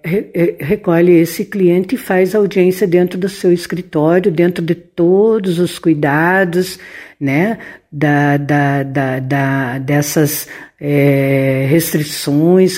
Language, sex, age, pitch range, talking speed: Portuguese, female, 60-79, 150-200 Hz, 110 wpm